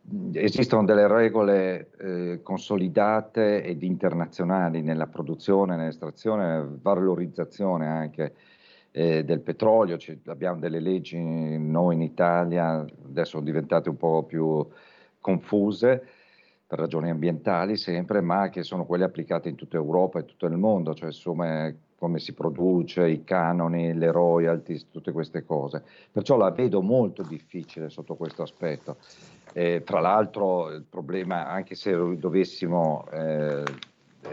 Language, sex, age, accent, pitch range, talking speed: Italian, male, 50-69, native, 80-95 Hz, 130 wpm